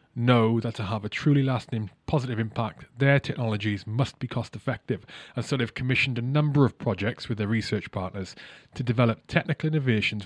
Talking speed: 180 wpm